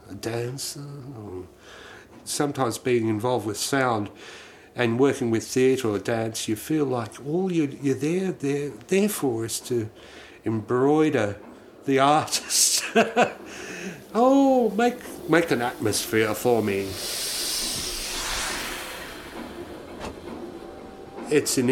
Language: English